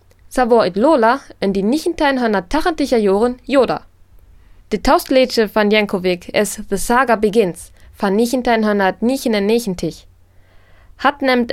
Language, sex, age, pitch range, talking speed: German, female, 20-39, 185-245 Hz, 120 wpm